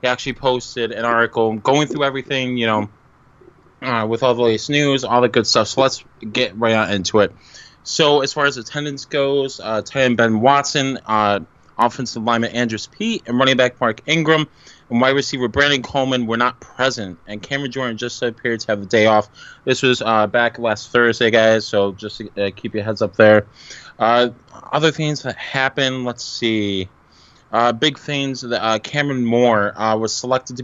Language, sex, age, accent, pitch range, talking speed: English, male, 20-39, American, 110-130 Hz, 190 wpm